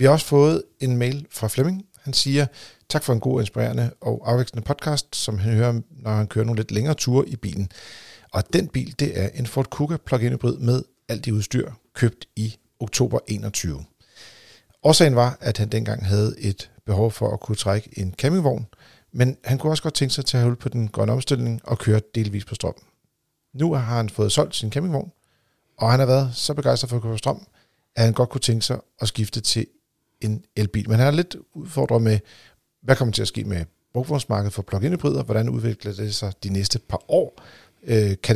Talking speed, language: 210 wpm, Danish